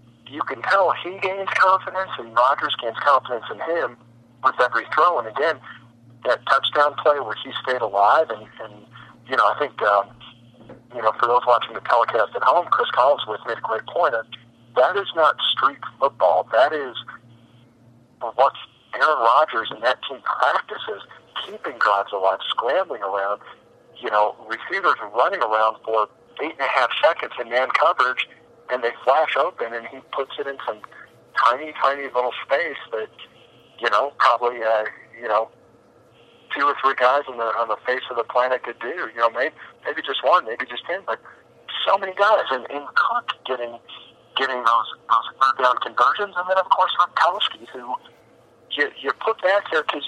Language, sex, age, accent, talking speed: English, male, 50-69, American, 180 wpm